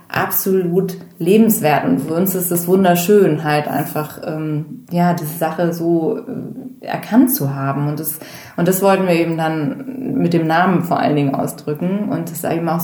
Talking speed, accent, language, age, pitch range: 180 wpm, German, German, 20-39, 155-180 Hz